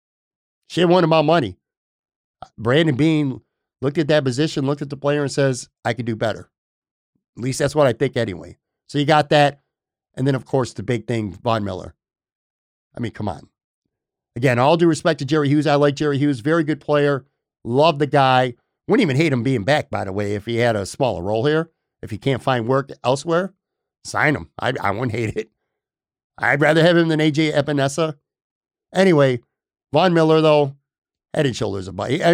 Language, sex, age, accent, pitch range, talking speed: English, male, 50-69, American, 120-155 Hz, 200 wpm